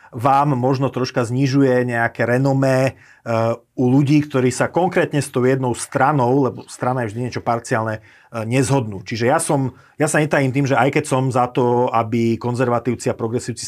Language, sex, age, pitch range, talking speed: Slovak, male, 30-49, 115-135 Hz, 170 wpm